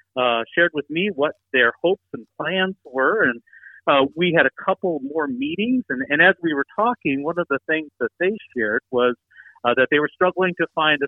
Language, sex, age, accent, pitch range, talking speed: English, male, 50-69, American, 120-160 Hz, 215 wpm